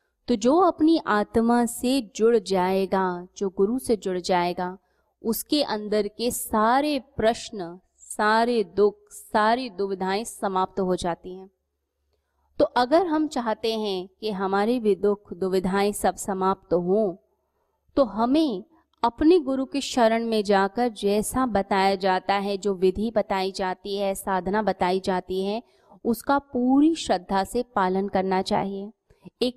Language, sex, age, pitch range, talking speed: Hindi, female, 20-39, 195-255 Hz, 135 wpm